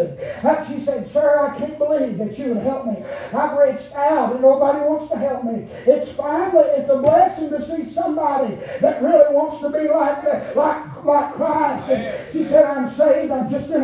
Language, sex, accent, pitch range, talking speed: English, male, American, 280-325 Hz, 200 wpm